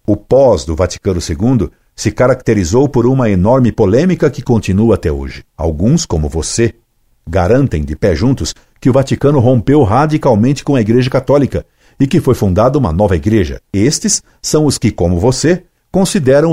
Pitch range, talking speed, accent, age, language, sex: 95-130 Hz, 165 wpm, Brazilian, 60-79, Portuguese, male